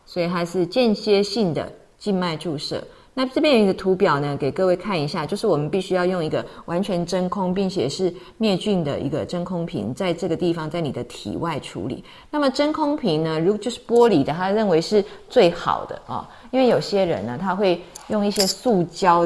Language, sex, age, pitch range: Chinese, female, 30-49, 155-195 Hz